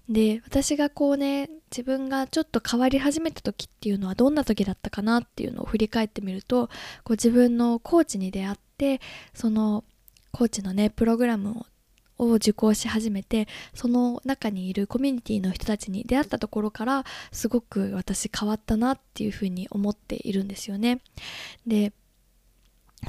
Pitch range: 210-255 Hz